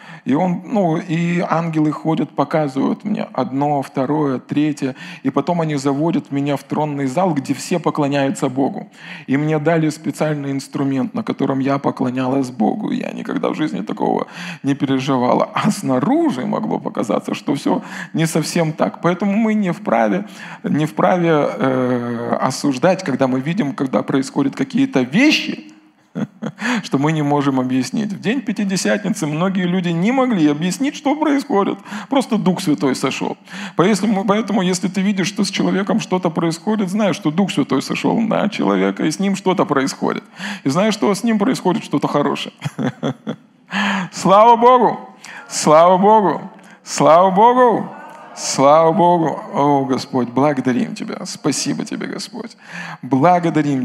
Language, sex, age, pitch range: Russian, male, 20-39, 140-205 Hz